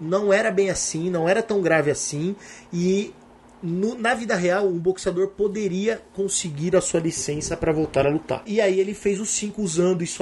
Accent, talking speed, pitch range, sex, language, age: Brazilian, 195 wpm, 150-190 Hz, male, Portuguese, 30-49